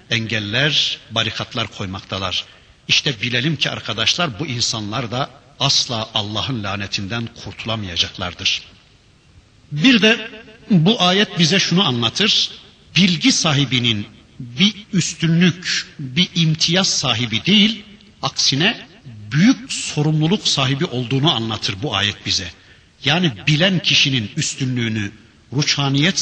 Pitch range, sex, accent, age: 115-180 Hz, male, native, 60-79